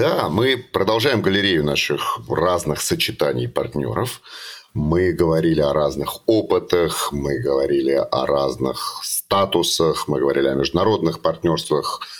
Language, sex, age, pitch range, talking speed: Russian, male, 40-59, 70-95 Hz, 115 wpm